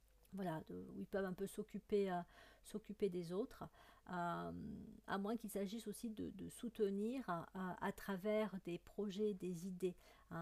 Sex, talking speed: female, 175 wpm